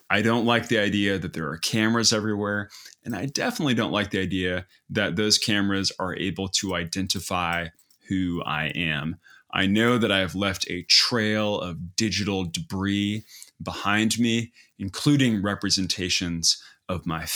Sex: male